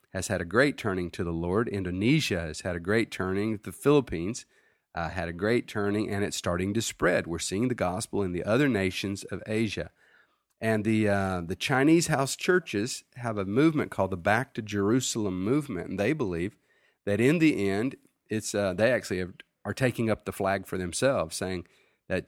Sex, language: male, English